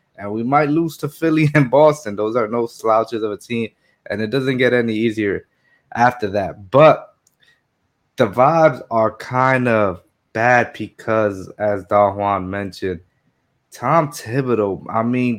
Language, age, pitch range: English, 20-39, 115-170 Hz